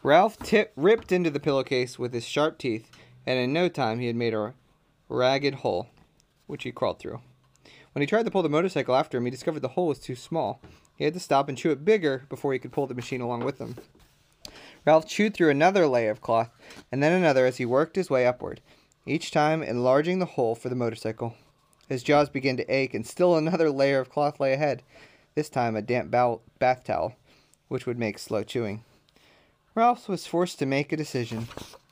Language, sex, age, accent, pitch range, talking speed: English, male, 30-49, American, 120-155 Hz, 210 wpm